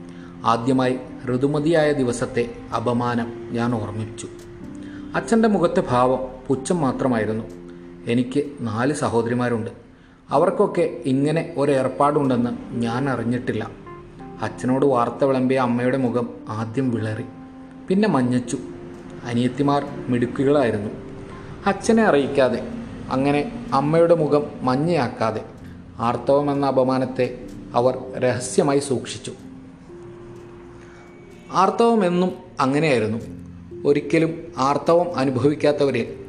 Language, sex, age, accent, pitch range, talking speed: Malayalam, male, 30-49, native, 115-145 Hz, 80 wpm